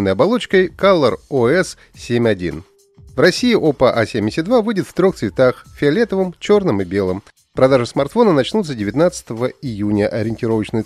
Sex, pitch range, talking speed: male, 110-180 Hz, 120 wpm